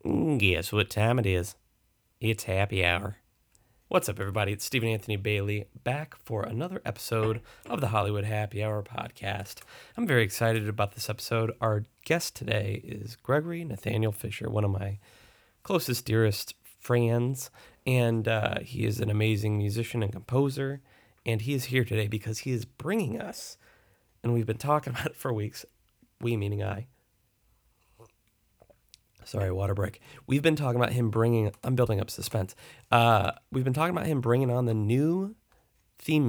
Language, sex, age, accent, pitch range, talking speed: English, male, 30-49, American, 105-125 Hz, 160 wpm